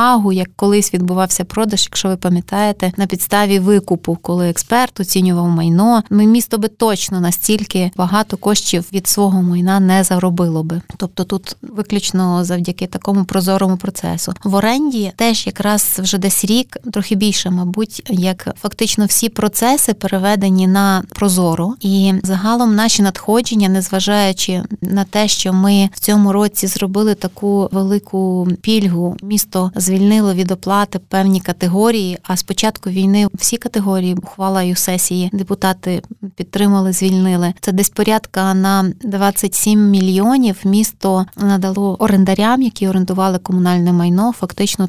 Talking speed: 130 wpm